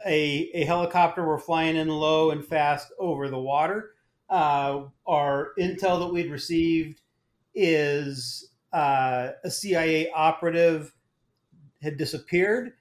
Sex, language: male, English